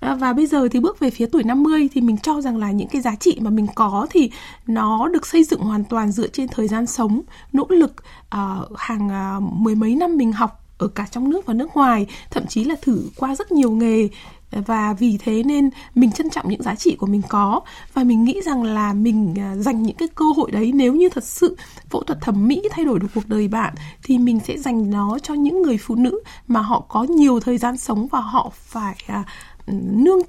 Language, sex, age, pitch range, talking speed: Vietnamese, female, 20-39, 220-295 Hz, 230 wpm